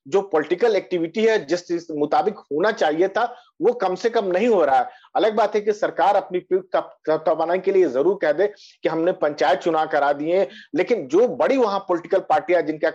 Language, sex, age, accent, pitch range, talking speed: Hindi, male, 50-69, native, 175-240 Hz, 190 wpm